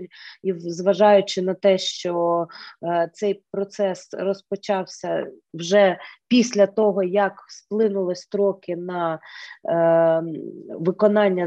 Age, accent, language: 20-39, native, Ukrainian